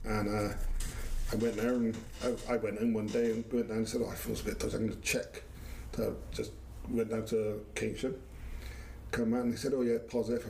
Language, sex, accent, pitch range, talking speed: English, male, British, 100-120 Hz, 230 wpm